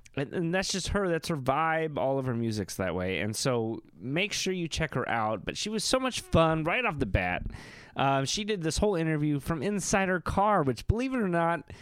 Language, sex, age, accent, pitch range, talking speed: English, male, 30-49, American, 110-170 Hz, 235 wpm